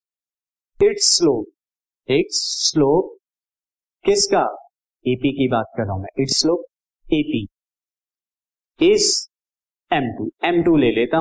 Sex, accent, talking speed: male, native, 85 wpm